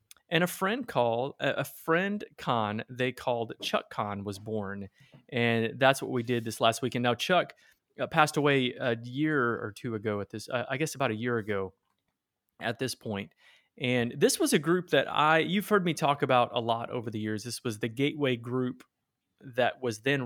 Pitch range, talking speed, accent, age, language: 110-140 Hz, 195 wpm, American, 30-49, English